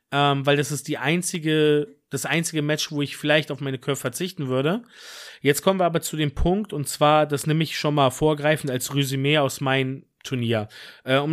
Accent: German